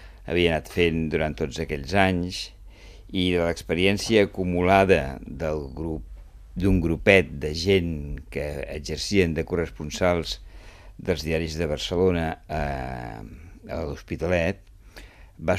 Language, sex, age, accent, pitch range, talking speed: Spanish, male, 60-79, Spanish, 80-95 Hz, 110 wpm